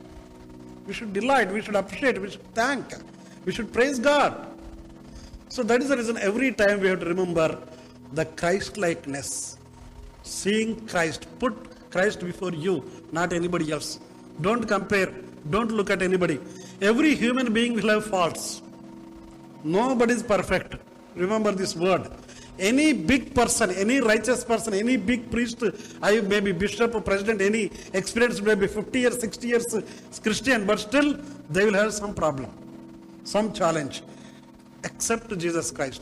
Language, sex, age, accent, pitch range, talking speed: Telugu, male, 50-69, native, 155-220 Hz, 150 wpm